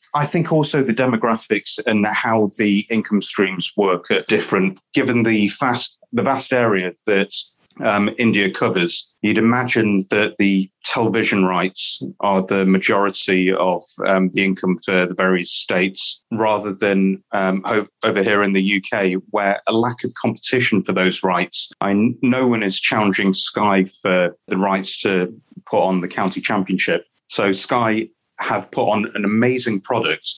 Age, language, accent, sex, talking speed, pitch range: 30-49, English, British, male, 150 wpm, 95-110 Hz